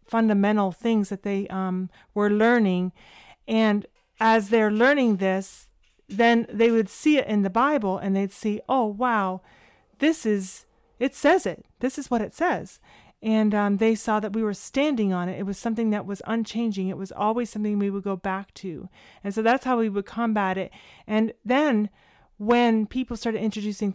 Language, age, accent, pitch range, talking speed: English, 40-59, American, 205-250 Hz, 185 wpm